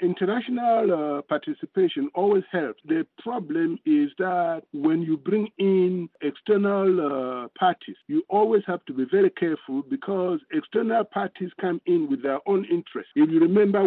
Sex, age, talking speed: male, 50-69, 150 wpm